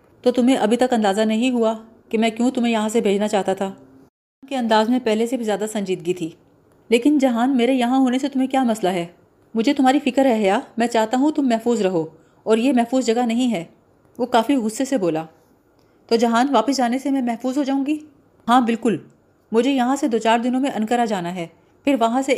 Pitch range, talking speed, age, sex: 205-255 Hz, 225 wpm, 30-49, female